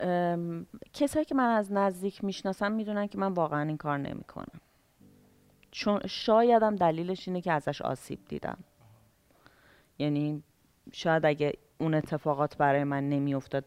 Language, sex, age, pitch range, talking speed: Persian, female, 30-49, 140-185 Hz, 130 wpm